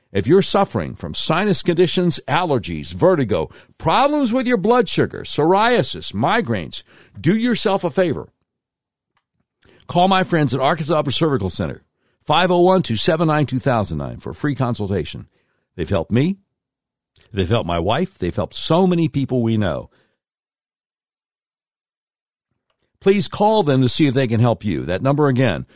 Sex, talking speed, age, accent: male, 135 wpm, 60-79, American